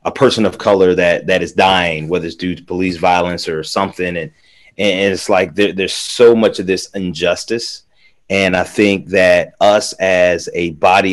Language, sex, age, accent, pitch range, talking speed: English, male, 30-49, American, 90-105 Hz, 190 wpm